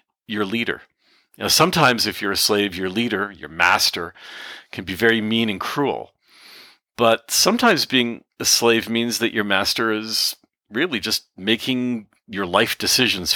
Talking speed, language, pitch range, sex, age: 150 wpm, English, 105-130 Hz, male, 40-59